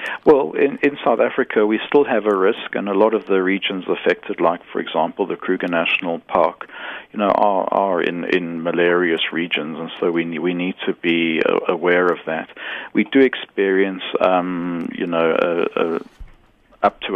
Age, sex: 50-69, male